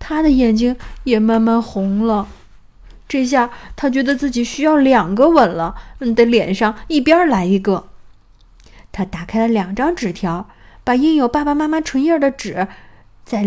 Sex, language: female, Chinese